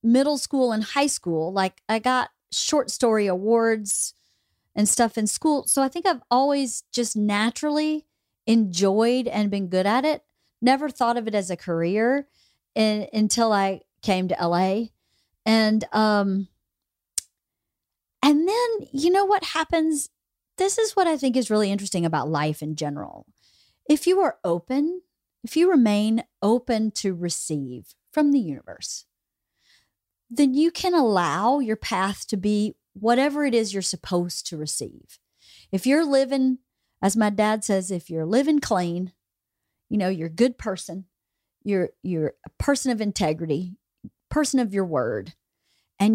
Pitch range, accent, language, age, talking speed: 190-270 Hz, American, English, 40-59, 150 wpm